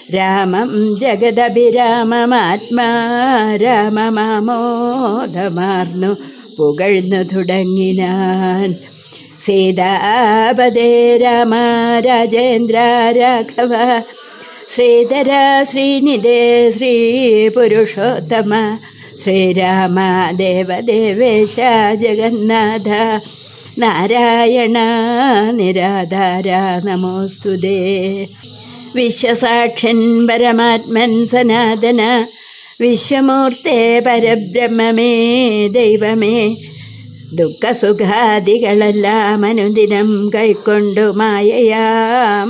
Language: Malayalam